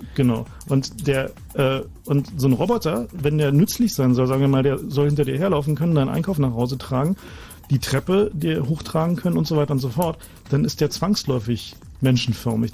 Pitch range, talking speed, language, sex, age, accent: 125-150 Hz, 205 wpm, German, male, 40-59, German